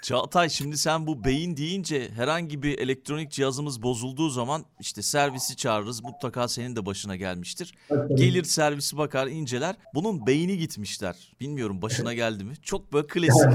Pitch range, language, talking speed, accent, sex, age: 110-160 Hz, Turkish, 150 wpm, native, male, 40-59